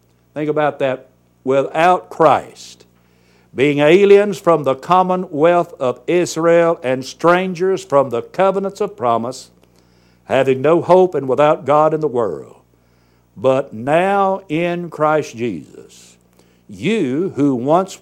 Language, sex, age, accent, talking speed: English, male, 60-79, American, 120 wpm